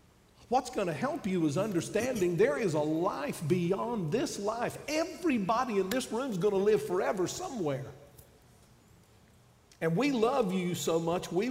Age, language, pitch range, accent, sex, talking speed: 50-69, English, 145-180 Hz, American, male, 160 wpm